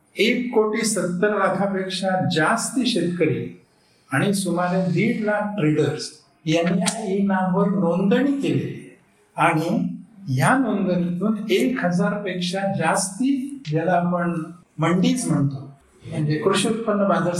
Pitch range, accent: 160-195 Hz, native